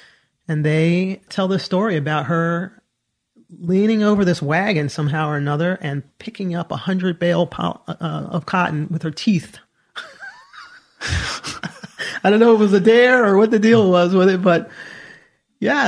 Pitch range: 160-200 Hz